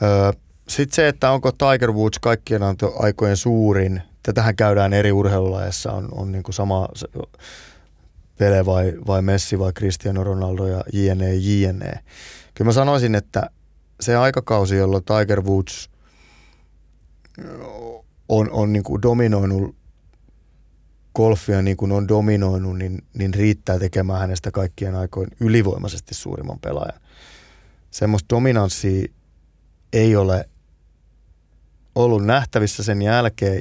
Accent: native